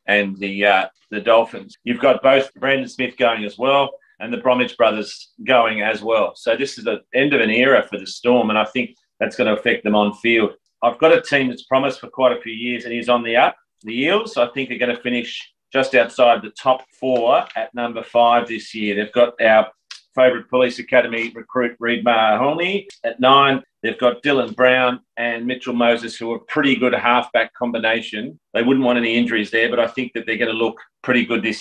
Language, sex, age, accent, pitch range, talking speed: English, male, 40-59, Australian, 110-125 Hz, 225 wpm